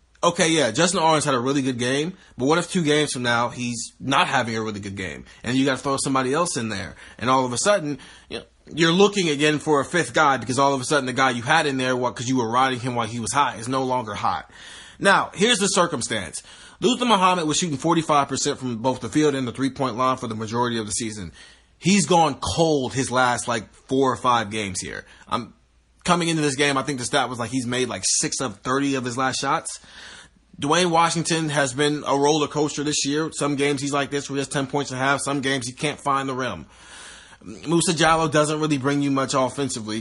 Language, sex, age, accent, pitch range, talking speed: English, male, 30-49, American, 125-150 Hz, 240 wpm